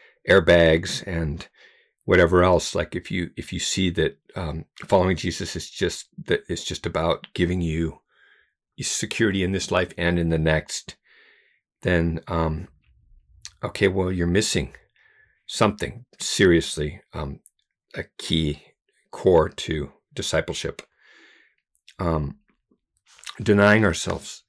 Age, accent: 50-69, American